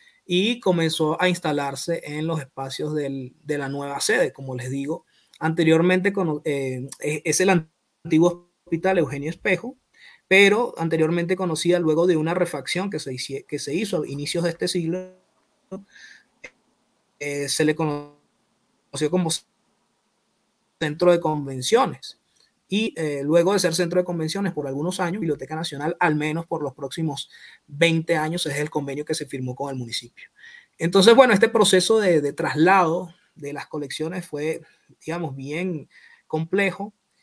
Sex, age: male, 20-39